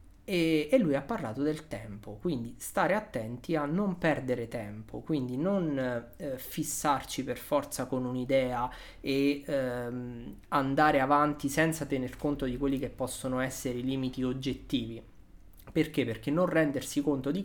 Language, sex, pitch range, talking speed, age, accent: Italian, male, 125-160 Hz, 150 wpm, 20-39, native